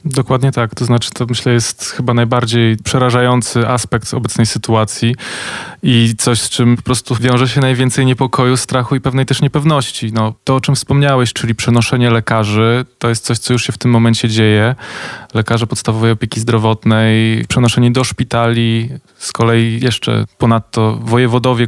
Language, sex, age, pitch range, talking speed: Polish, male, 20-39, 110-125 Hz, 160 wpm